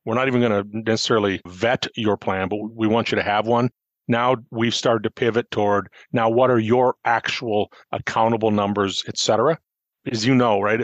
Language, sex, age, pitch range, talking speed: English, male, 40-59, 110-125 Hz, 190 wpm